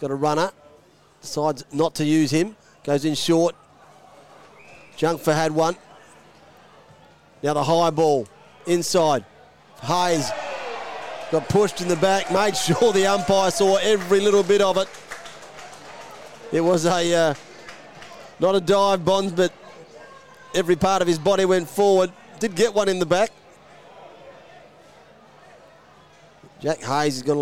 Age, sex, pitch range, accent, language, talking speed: 30-49, male, 155-195 Hz, Australian, English, 135 wpm